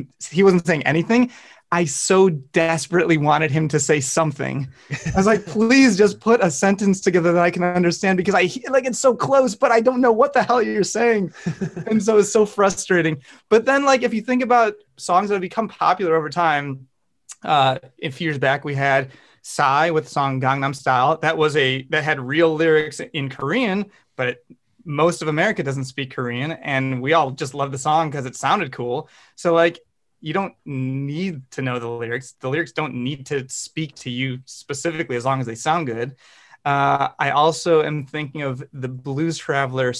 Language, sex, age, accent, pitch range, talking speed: English, male, 30-49, American, 135-175 Hz, 200 wpm